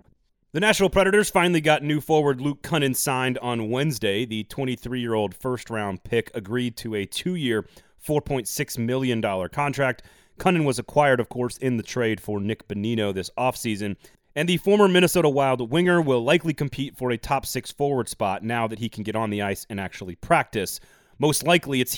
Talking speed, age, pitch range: 175 wpm, 30-49, 110-140 Hz